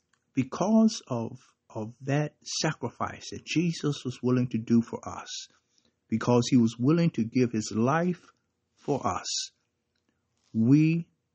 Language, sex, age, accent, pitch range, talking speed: English, male, 60-79, American, 115-145 Hz, 125 wpm